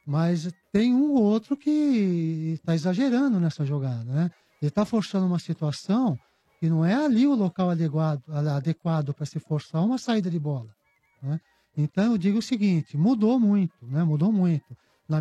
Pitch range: 155-210 Hz